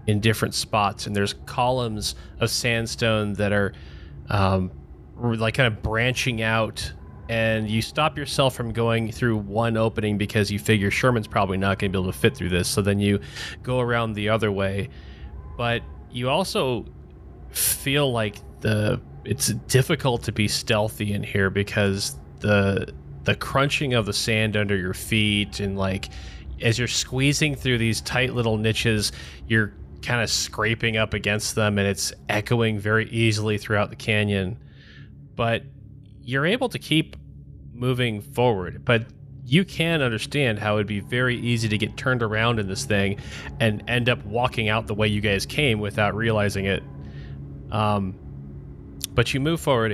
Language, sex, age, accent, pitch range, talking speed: English, male, 20-39, American, 100-120 Hz, 165 wpm